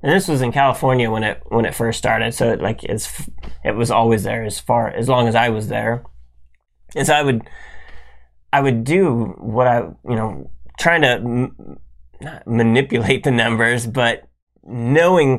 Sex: male